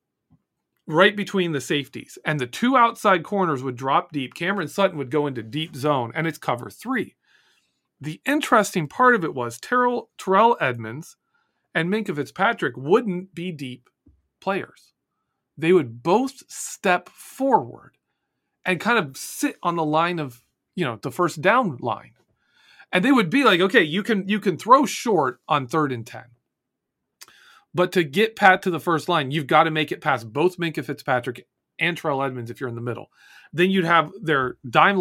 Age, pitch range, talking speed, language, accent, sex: 40-59, 135-185 Hz, 180 wpm, English, American, male